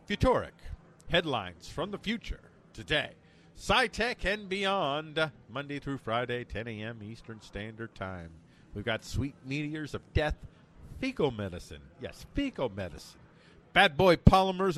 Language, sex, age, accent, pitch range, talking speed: English, male, 50-69, American, 95-155 Hz, 125 wpm